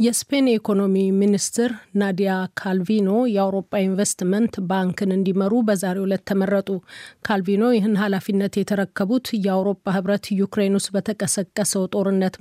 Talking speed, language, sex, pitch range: 95 wpm, Amharic, female, 190-210 Hz